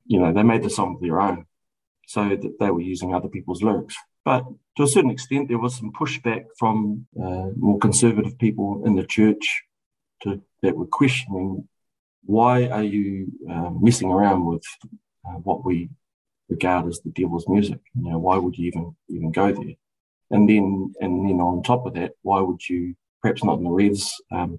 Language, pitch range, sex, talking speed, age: English, 95-115 Hz, male, 195 wpm, 40-59